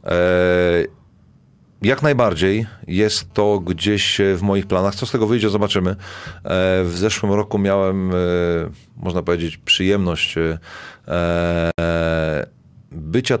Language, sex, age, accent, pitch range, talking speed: Polish, male, 40-59, native, 90-105 Hz, 95 wpm